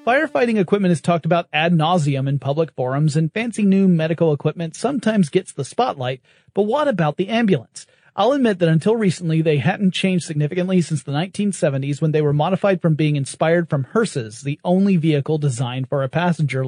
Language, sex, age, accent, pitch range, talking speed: English, male, 30-49, American, 150-205 Hz, 185 wpm